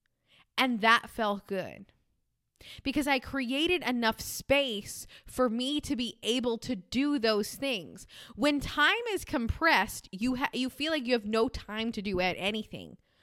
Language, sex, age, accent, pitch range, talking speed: English, female, 20-39, American, 205-280 Hz, 155 wpm